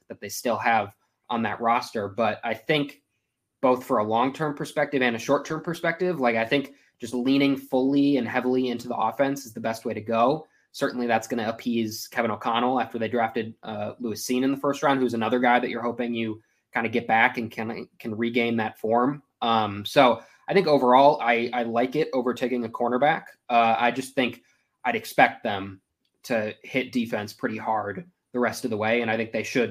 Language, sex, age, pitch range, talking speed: English, male, 20-39, 115-135 Hz, 210 wpm